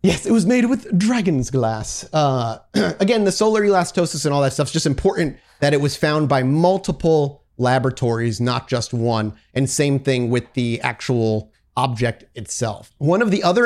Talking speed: 180 wpm